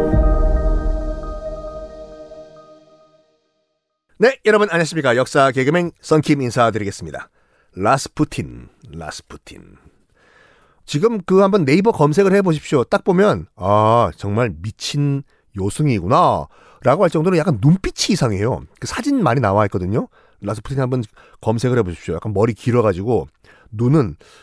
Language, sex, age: Korean, male, 40-59